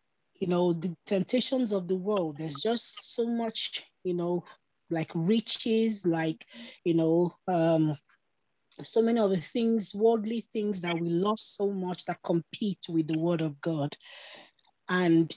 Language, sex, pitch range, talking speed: English, female, 160-195 Hz, 150 wpm